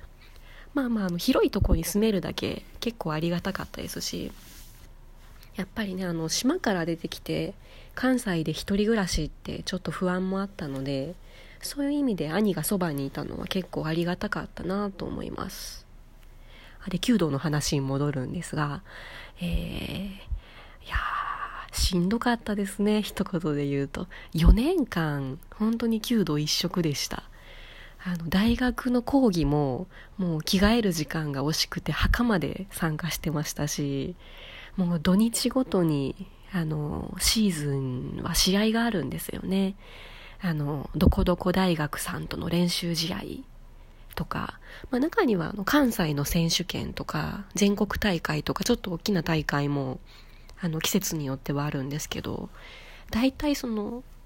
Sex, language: female, Japanese